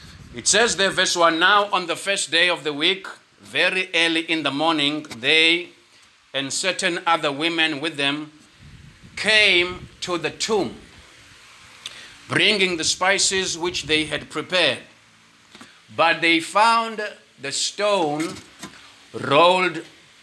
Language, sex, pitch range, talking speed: English, male, 150-185 Hz, 125 wpm